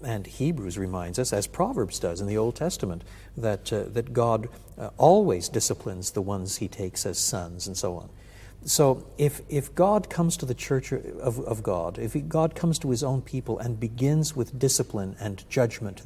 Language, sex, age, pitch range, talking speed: English, male, 60-79, 105-140 Hz, 190 wpm